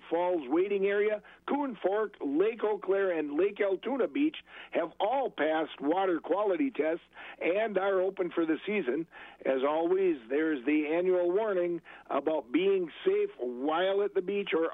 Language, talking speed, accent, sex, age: English, 155 wpm, American, male, 60-79